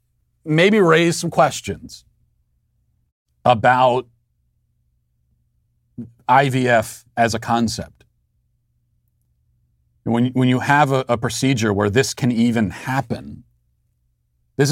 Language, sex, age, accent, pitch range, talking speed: English, male, 40-59, American, 110-140 Hz, 90 wpm